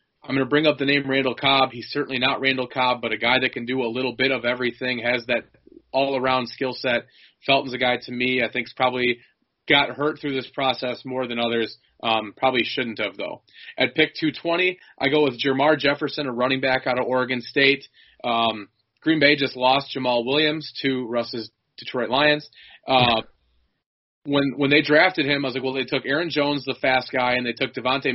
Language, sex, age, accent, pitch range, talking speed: English, male, 30-49, American, 120-140 Hz, 210 wpm